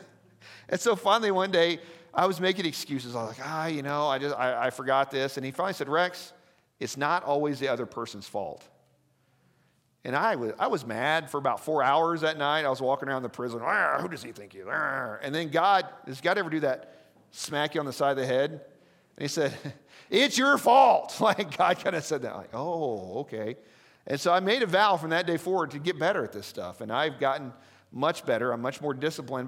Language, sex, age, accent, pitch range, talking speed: English, male, 40-59, American, 135-185 Hz, 230 wpm